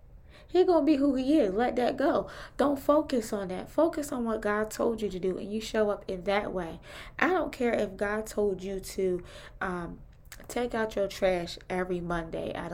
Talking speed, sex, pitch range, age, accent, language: 210 wpm, female, 185-235 Hz, 20-39, American, English